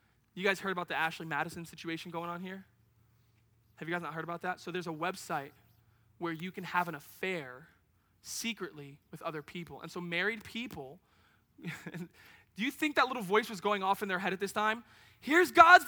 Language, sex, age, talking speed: English, male, 20-39, 200 wpm